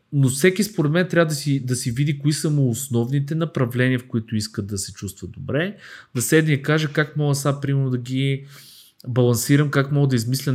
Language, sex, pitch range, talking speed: Bulgarian, male, 105-130 Hz, 210 wpm